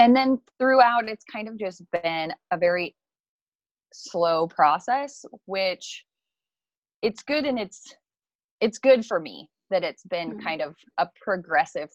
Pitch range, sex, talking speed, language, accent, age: 160-215 Hz, female, 140 wpm, English, American, 20-39